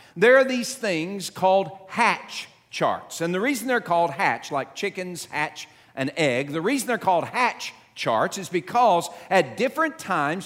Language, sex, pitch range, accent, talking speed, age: English, male, 150-225 Hz, American, 165 wpm, 50-69